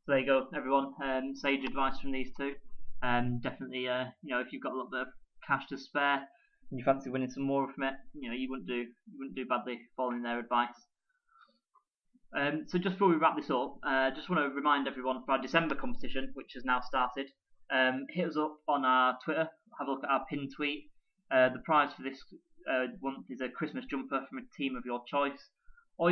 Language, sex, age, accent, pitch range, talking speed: English, male, 20-39, British, 125-145 Hz, 230 wpm